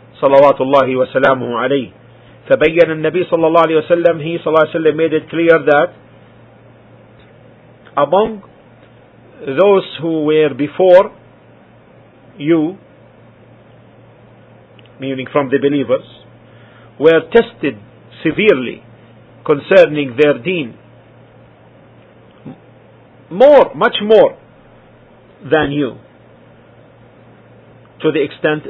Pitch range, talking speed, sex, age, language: 120-155 Hz, 90 wpm, male, 50-69, English